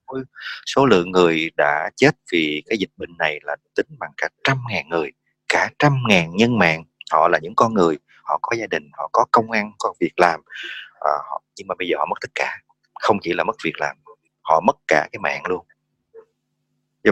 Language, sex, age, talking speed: English, male, 30-49, 205 wpm